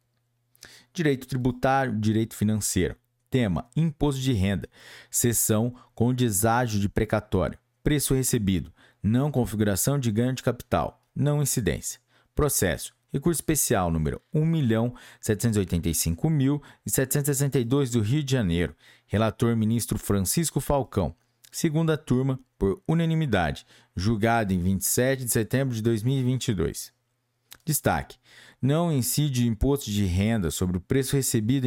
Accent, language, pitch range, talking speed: Brazilian, Portuguese, 105-135 Hz, 110 wpm